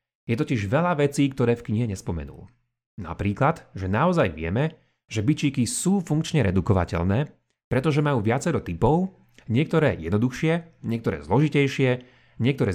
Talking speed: 120 wpm